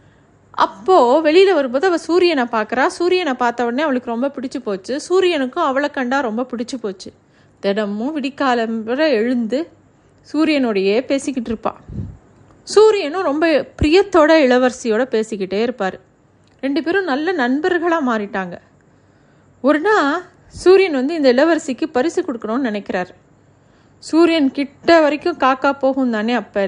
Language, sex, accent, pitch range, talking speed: Tamil, female, native, 230-300 Hz, 115 wpm